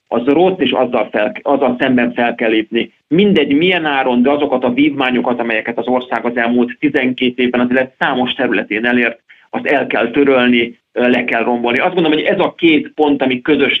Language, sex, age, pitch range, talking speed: Hungarian, male, 40-59, 120-150 Hz, 190 wpm